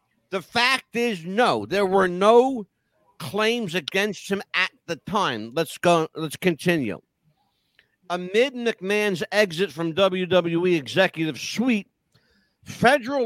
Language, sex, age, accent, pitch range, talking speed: English, male, 60-79, American, 170-220 Hz, 115 wpm